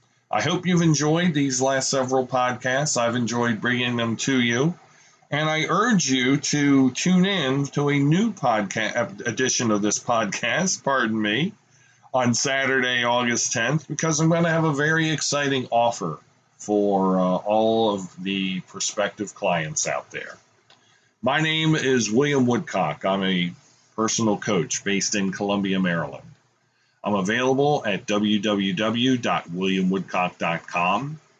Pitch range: 105-140 Hz